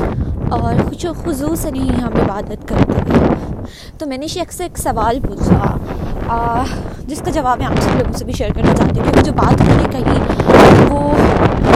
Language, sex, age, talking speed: Urdu, female, 20-39, 190 wpm